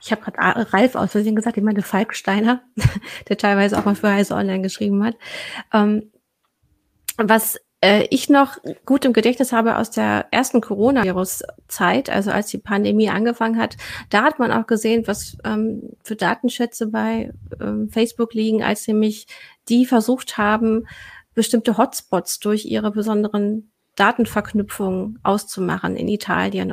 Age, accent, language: 30-49, German, German